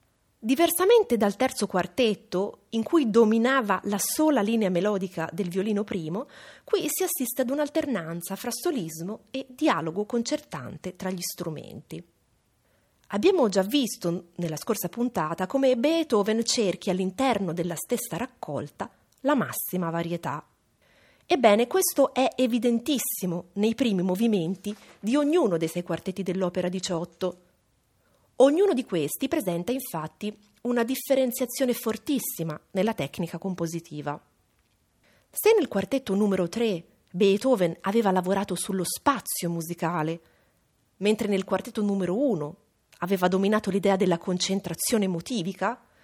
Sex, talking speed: female, 115 wpm